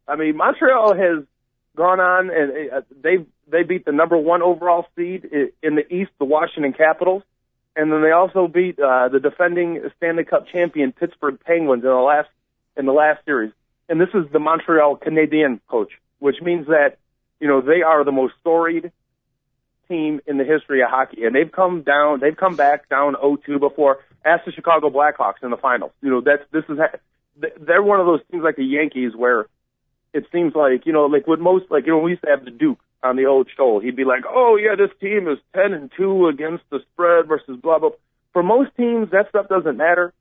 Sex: male